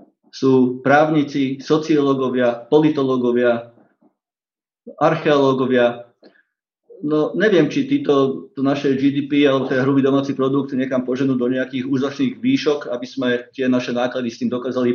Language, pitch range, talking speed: Slovak, 125-150 Hz, 130 wpm